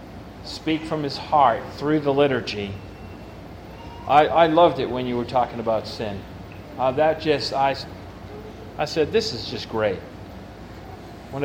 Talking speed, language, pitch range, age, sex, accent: 145 wpm, English, 110-160 Hz, 40-59, male, American